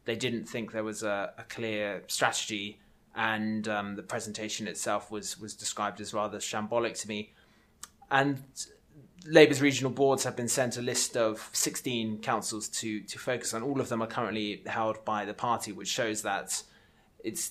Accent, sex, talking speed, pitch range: British, male, 175 wpm, 110-130 Hz